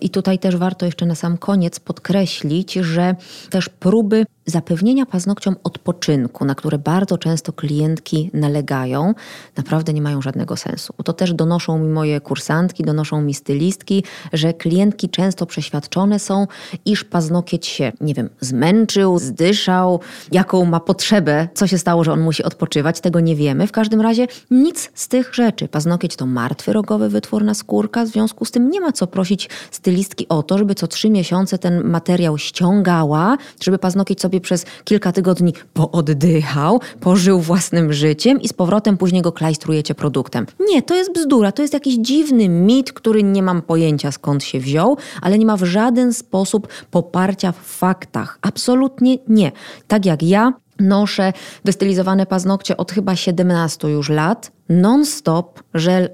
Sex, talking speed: female, 160 wpm